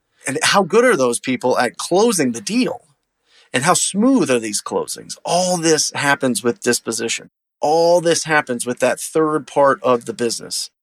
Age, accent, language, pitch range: 30-49, American, English, 130-175 Hz